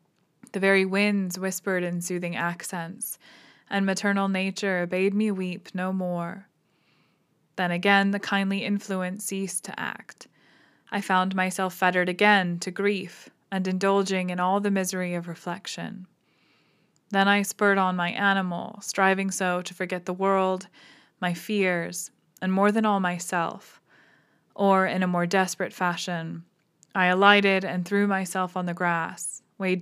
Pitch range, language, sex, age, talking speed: 175-195 Hz, English, female, 20-39, 145 wpm